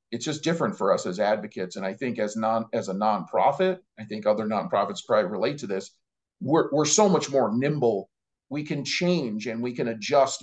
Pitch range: 115-150 Hz